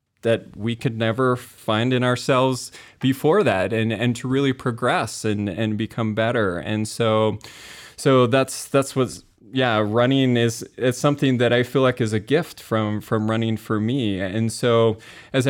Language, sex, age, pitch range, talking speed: English, male, 20-39, 110-130 Hz, 170 wpm